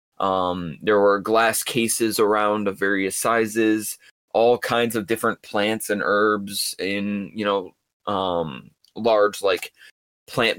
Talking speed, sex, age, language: 130 wpm, male, 20-39, English